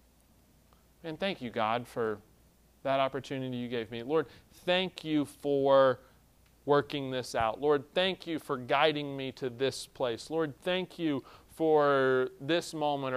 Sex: male